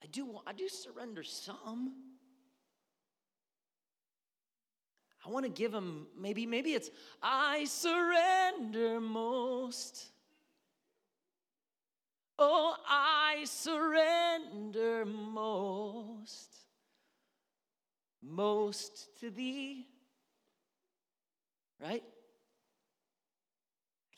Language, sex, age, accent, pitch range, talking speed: English, male, 30-49, American, 155-250 Hz, 65 wpm